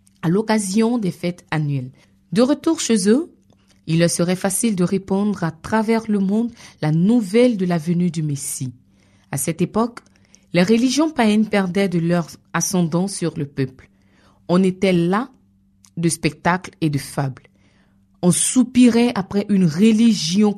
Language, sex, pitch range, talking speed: French, female, 160-225 Hz, 150 wpm